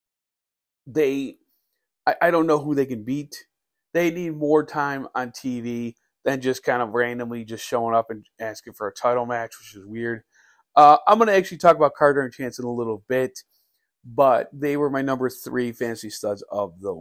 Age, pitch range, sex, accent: 30-49, 125-170 Hz, male, American